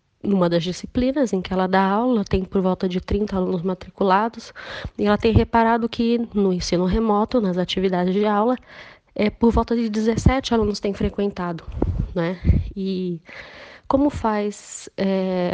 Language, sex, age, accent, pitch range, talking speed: Portuguese, female, 10-29, Brazilian, 180-220 Hz, 155 wpm